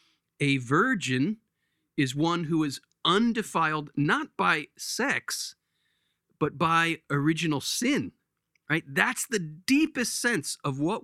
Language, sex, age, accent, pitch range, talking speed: English, male, 40-59, American, 135-175 Hz, 115 wpm